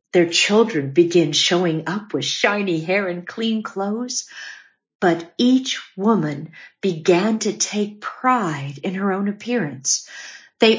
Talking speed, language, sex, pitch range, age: 130 wpm, English, female, 175-230 Hz, 50-69